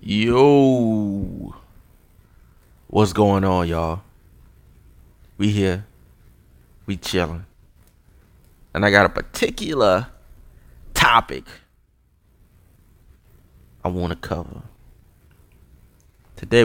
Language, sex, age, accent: English, male, 30-49, American